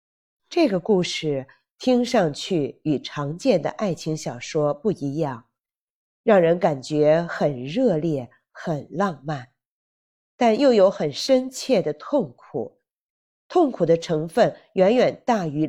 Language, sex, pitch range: Chinese, female, 145-210 Hz